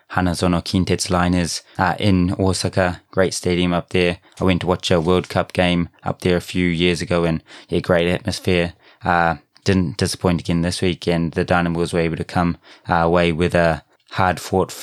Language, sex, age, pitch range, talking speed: English, male, 20-39, 85-95 Hz, 185 wpm